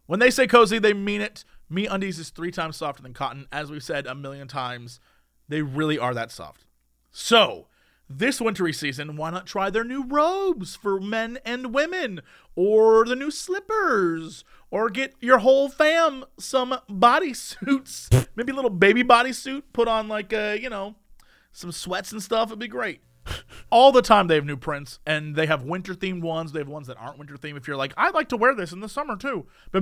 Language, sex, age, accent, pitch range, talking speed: English, male, 30-49, American, 150-245 Hz, 205 wpm